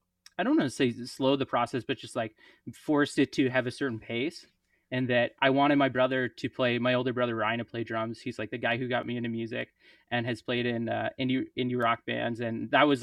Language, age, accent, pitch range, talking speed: English, 20-39, American, 120-160 Hz, 250 wpm